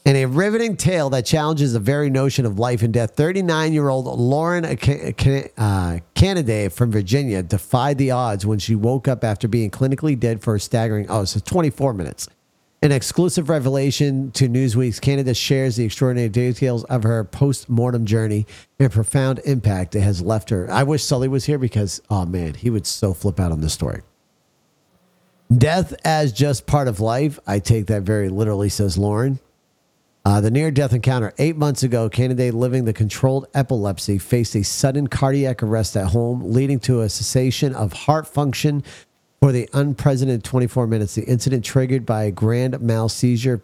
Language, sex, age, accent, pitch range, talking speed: English, male, 50-69, American, 105-135 Hz, 170 wpm